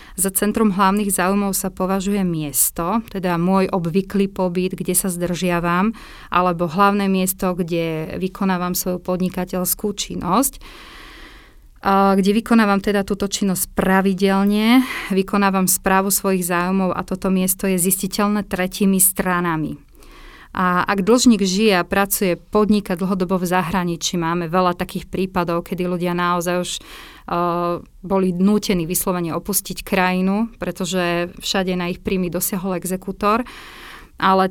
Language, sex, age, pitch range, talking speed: Slovak, female, 30-49, 180-200 Hz, 125 wpm